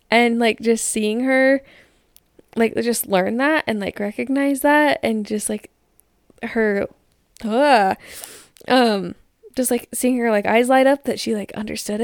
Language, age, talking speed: English, 10-29, 155 wpm